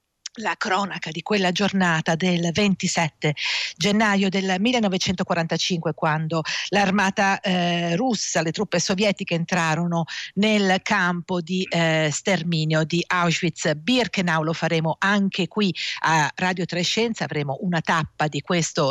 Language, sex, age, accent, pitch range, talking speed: Italian, female, 50-69, native, 160-200 Hz, 115 wpm